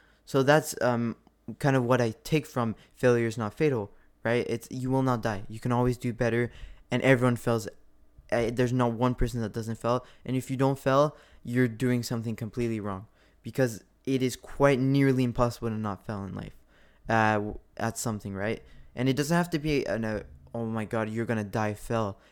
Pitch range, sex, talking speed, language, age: 115-145 Hz, male, 200 wpm, English, 20-39